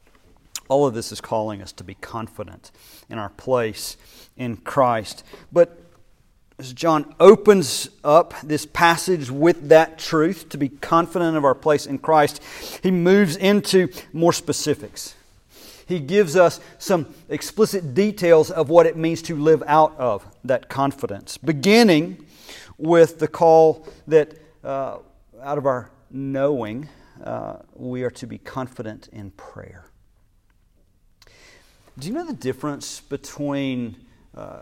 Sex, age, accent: male, 50-69, American